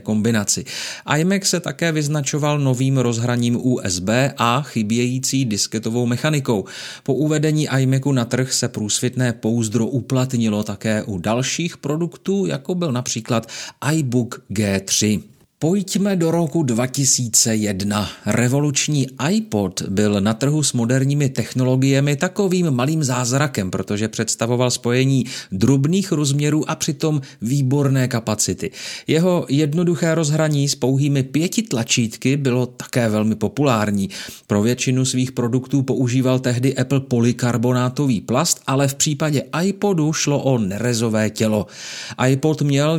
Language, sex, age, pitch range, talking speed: Czech, male, 40-59, 115-150 Hz, 115 wpm